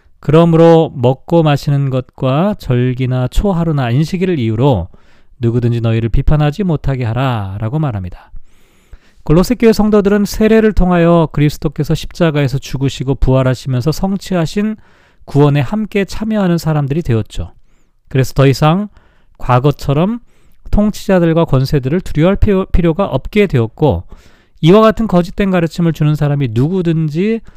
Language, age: Korean, 40-59